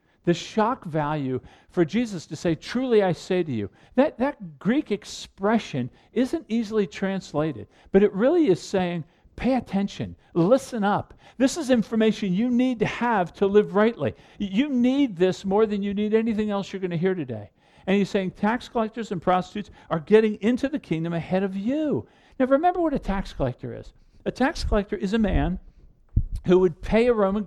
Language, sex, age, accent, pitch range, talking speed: English, male, 50-69, American, 180-240 Hz, 185 wpm